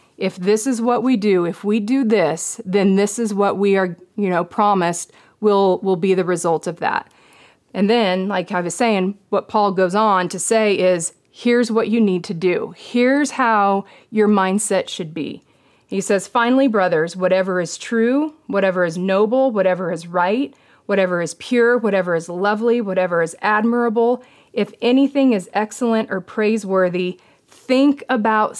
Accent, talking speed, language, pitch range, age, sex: American, 170 wpm, English, 190-235 Hz, 30-49, female